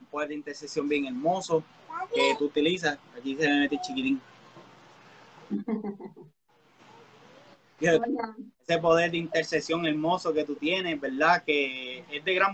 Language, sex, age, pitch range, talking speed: Spanish, male, 20-39, 150-185 Hz, 125 wpm